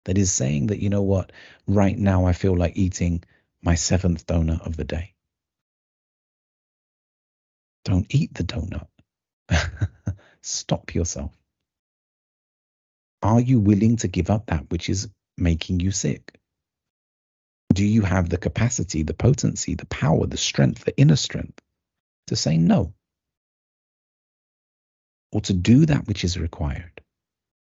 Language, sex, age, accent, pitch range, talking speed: English, male, 40-59, British, 80-100 Hz, 130 wpm